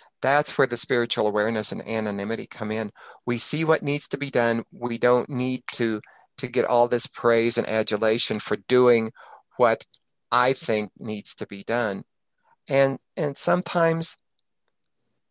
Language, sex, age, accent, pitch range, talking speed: English, male, 50-69, American, 115-145 Hz, 155 wpm